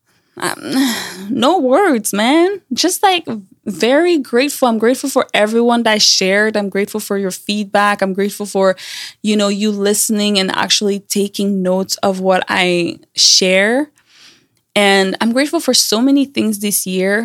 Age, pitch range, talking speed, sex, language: 20-39, 190-220 Hz, 150 wpm, female, English